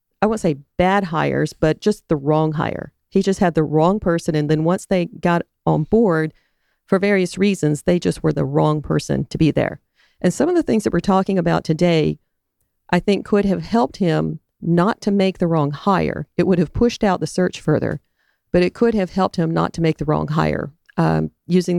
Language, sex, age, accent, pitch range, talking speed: English, female, 40-59, American, 155-180 Hz, 220 wpm